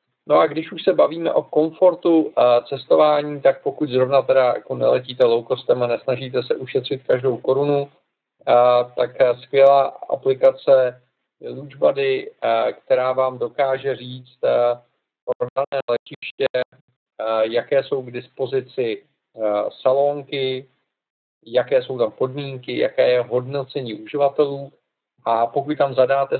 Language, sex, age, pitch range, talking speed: Czech, male, 50-69, 125-145 Hz, 115 wpm